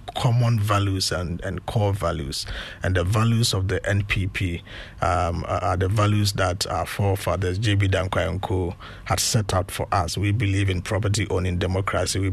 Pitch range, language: 90-110 Hz, English